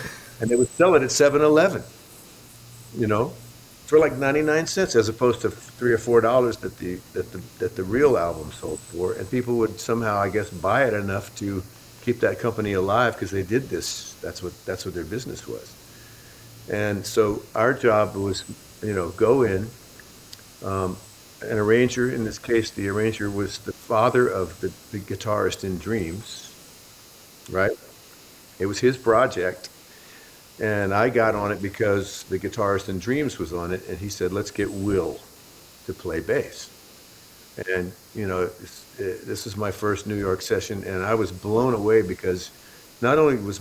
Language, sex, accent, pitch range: English, male, American, 95-115 Hz